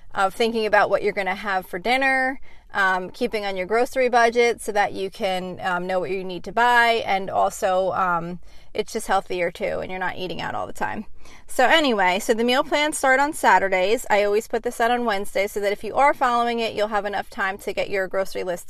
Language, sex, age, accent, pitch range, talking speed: English, female, 30-49, American, 195-240 Hz, 235 wpm